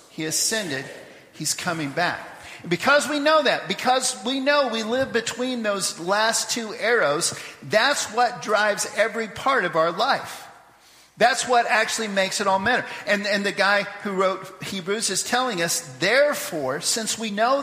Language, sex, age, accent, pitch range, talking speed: English, male, 50-69, American, 175-235 Hz, 165 wpm